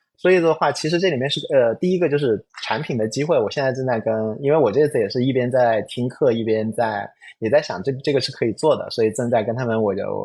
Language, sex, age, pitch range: Chinese, male, 20-39, 110-150 Hz